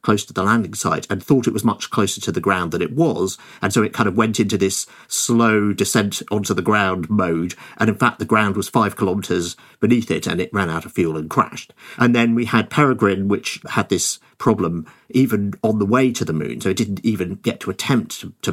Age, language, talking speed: 50-69, English, 235 wpm